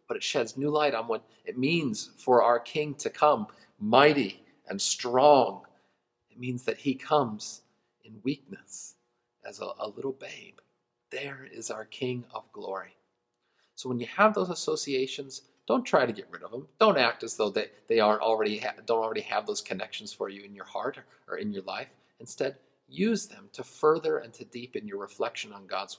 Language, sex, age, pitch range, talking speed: English, male, 40-59, 105-150 Hz, 190 wpm